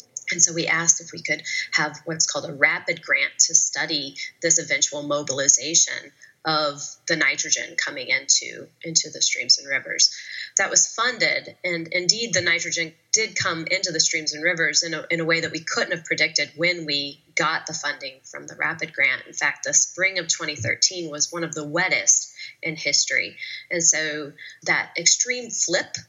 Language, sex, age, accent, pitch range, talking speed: English, female, 20-39, American, 150-170 Hz, 180 wpm